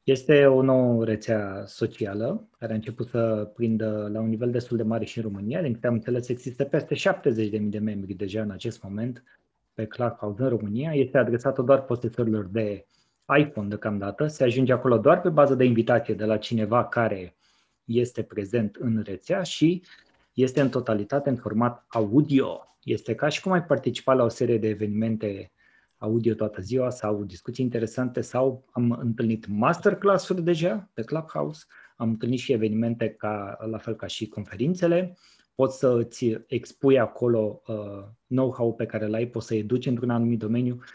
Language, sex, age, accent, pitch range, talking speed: Romanian, male, 20-39, native, 110-130 Hz, 170 wpm